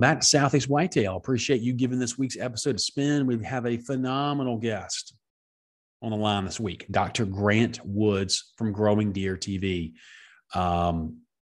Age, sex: 30-49, male